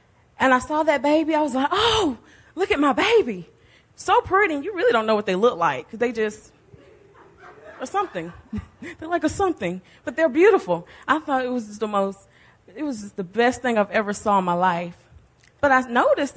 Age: 20-39